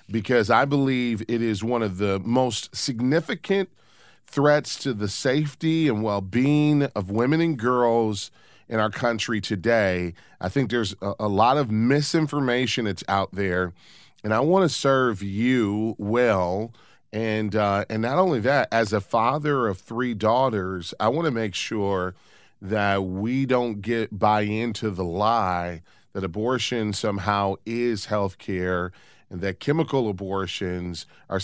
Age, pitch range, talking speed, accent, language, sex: 30-49, 100-125 Hz, 145 wpm, American, English, male